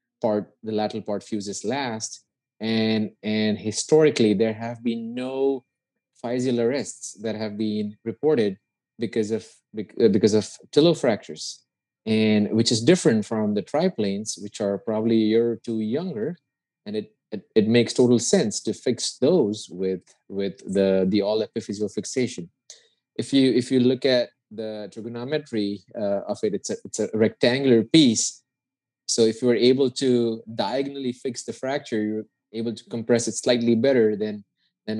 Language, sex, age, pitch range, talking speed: English, male, 20-39, 105-125 Hz, 160 wpm